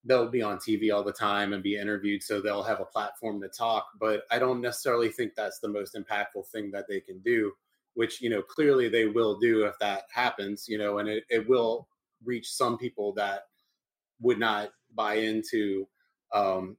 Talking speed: 200 wpm